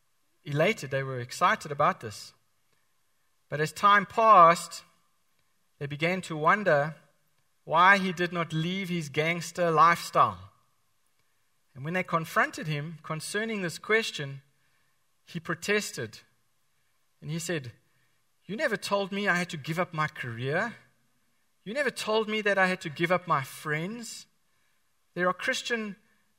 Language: English